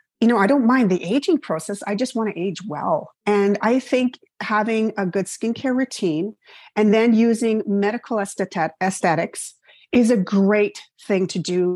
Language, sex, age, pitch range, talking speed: English, female, 30-49, 185-230 Hz, 175 wpm